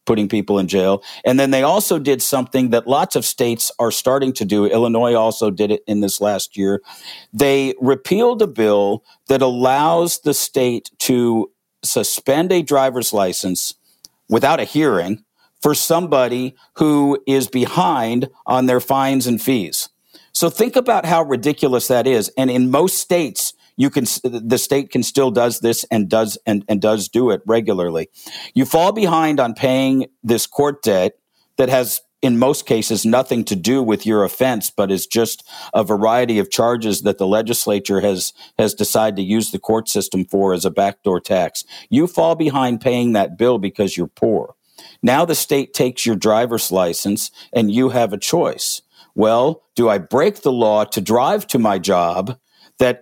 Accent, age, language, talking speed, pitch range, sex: American, 50-69, English, 175 wpm, 105-135 Hz, male